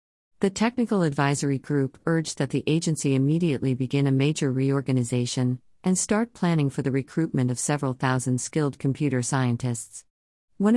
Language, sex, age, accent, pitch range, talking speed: English, female, 50-69, American, 130-155 Hz, 145 wpm